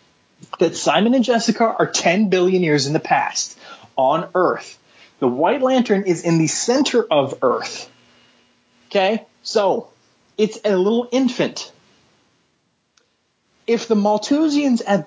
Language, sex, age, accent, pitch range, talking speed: English, male, 30-49, American, 175-235 Hz, 125 wpm